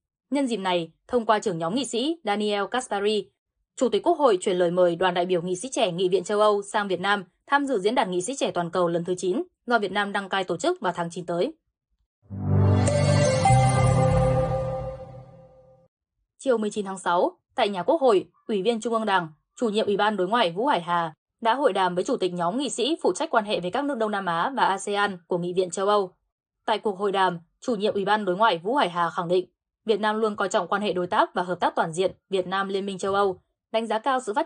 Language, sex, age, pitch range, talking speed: Vietnamese, female, 20-39, 175-225 Hz, 245 wpm